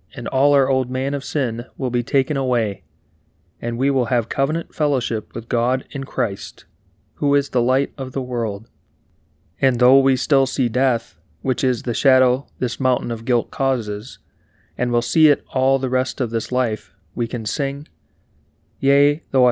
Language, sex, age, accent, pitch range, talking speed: English, male, 30-49, American, 105-135 Hz, 180 wpm